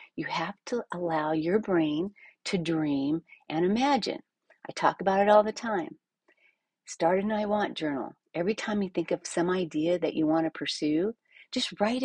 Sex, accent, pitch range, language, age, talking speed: female, American, 165-235 Hz, English, 40-59, 180 wpm